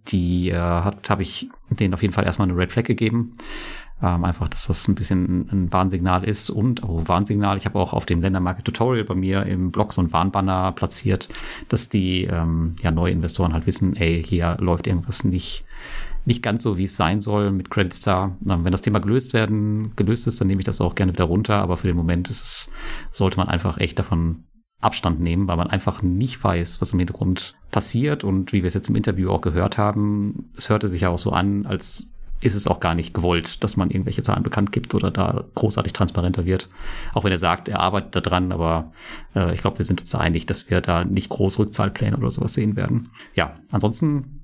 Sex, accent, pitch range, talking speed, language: male, German, 90-110 Hz, 220 wpm, German